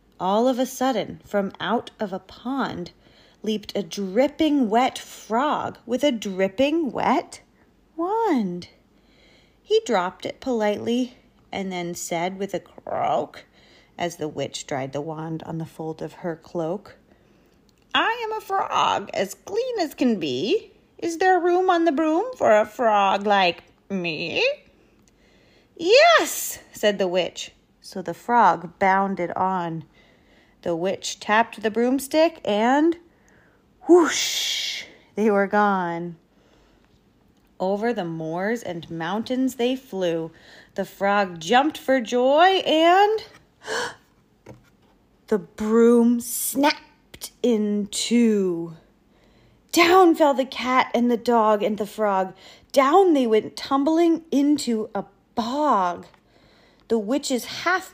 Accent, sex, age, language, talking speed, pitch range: American, female, 30-49, English, 120 wpm, 195-300 Hz